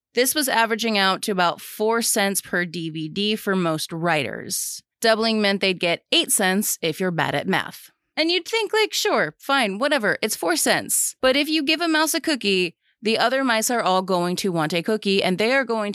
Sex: female